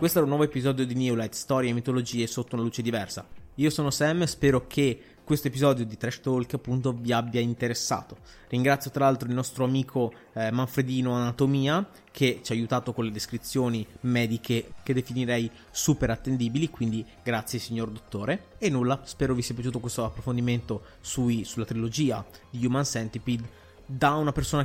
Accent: native